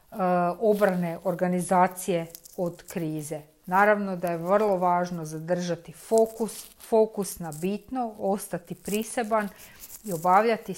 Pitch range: 170-205 Hz